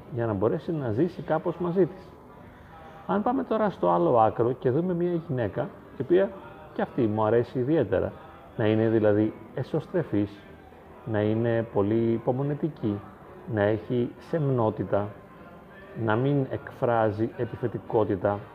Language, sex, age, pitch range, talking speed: Greek, male, 40-59, 105-160 Hz, 130 wpm